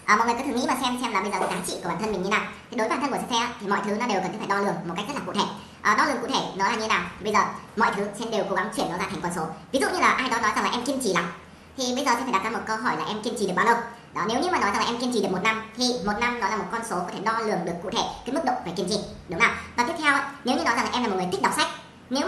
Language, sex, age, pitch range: Vietnamese, male, 20-39, 190-245 Hz